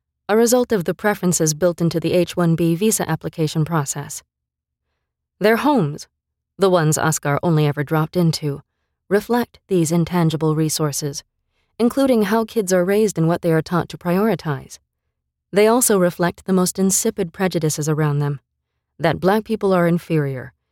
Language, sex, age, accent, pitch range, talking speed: English, female, 20-39, American, 145-200 Hz, 150 wpm